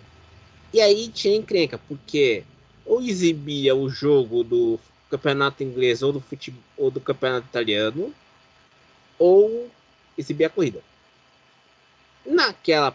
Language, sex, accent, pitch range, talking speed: Portuguese, male, Brazilian, 140-205 Hz, 110 wpm